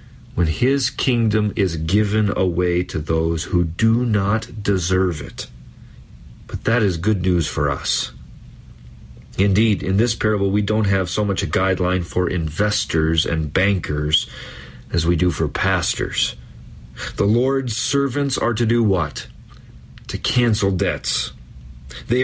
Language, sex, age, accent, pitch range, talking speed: English, male, 40-59, American, 85-115 Hz, 140 wpm